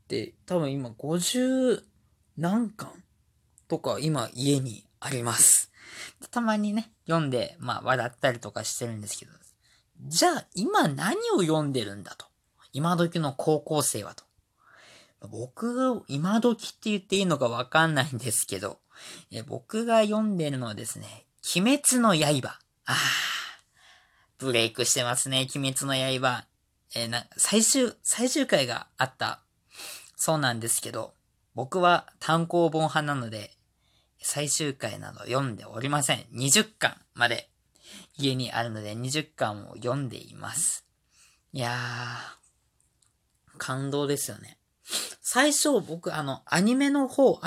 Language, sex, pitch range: Japanese, female, 120-200 Hz